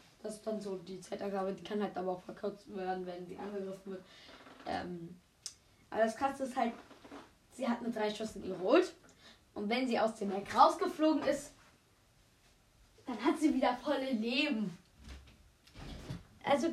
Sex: female